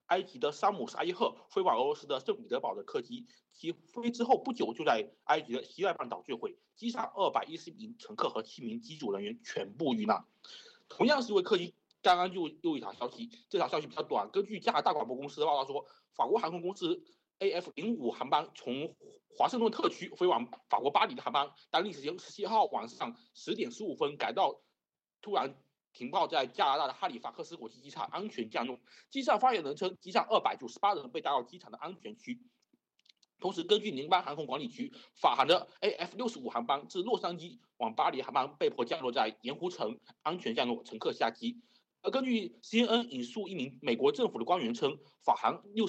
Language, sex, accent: Chinese, male, native